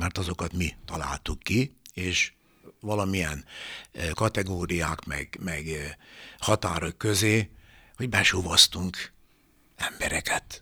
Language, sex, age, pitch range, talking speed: Hungarian, male, 60-79, 85-110 Hz, 85 wpm